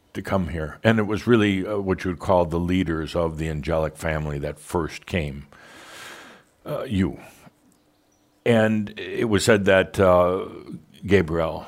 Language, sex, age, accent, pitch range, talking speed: English, male, 60-79, American, 80-100 Hz, 155 wpm